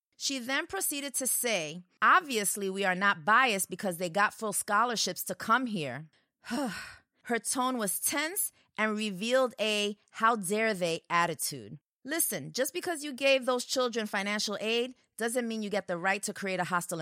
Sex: female